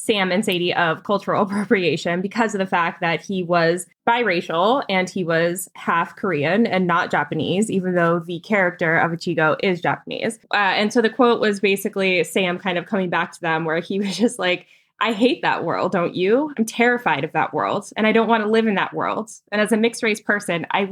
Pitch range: 175-220 Hz